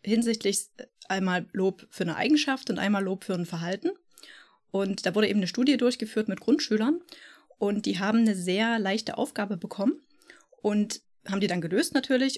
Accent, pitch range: German, 185-235 Hz